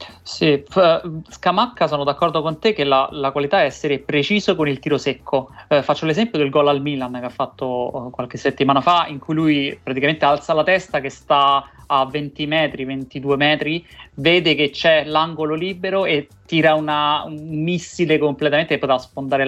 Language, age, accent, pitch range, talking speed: Italian, 30-49, native, 140-175 Hz, 185 wpm